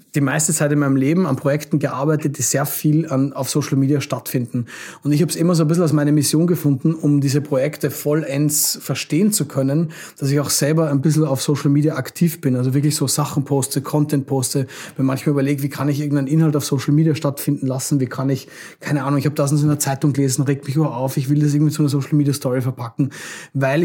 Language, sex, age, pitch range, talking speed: German, male, 30-49, 135-150 Hz, 235 wpm